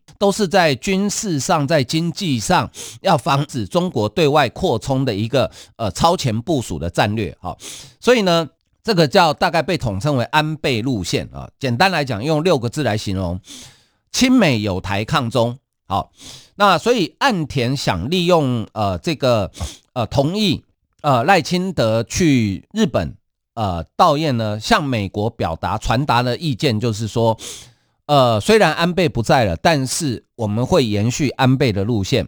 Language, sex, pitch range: Chinese, male, 115-165 Hz